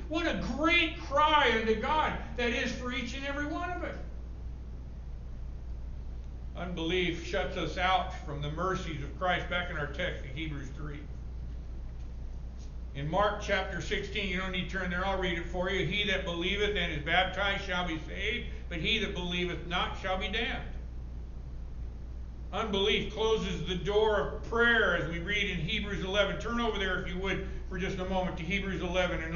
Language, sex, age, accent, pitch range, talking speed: English, male, 60-79, American, 150-230 Hz, 180 wpm